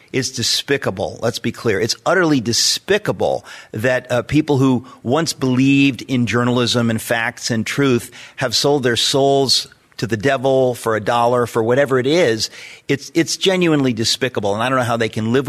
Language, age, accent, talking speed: English, 40-59, American, 180 wpm